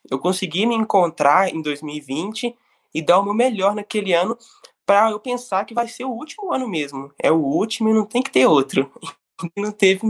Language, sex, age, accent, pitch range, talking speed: Portuguese, male, 20-39, Brazilian, 165-220 Hz, 200 wpm